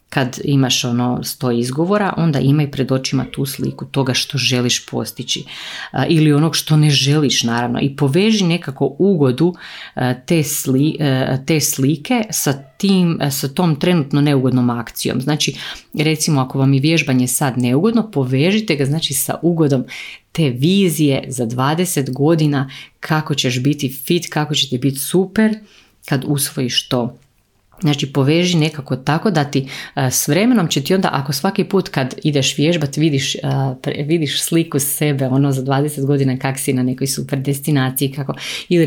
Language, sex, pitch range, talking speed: Croatian, female, 130-155 Hz, 155 wpm